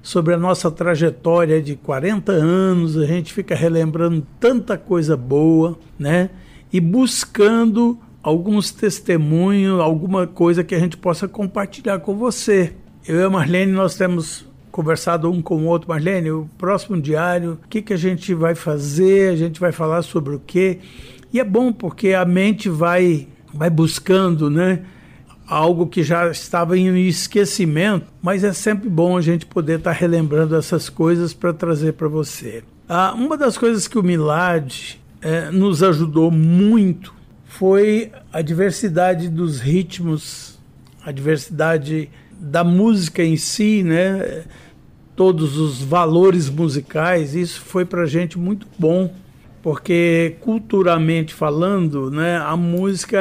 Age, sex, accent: 60-79, male, Brazilian